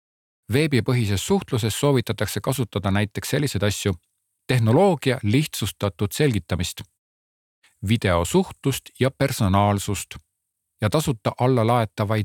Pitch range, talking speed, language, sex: 100-130 Hz, 90 wpm, Czech, male